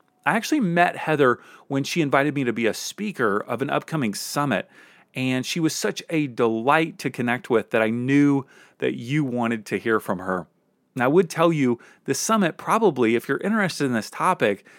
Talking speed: 200 wpm